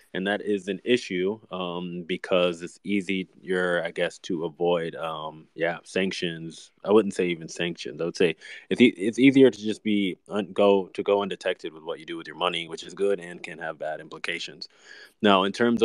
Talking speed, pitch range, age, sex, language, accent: 210 wpm, 90-105 Hz, 20-39, male, English, American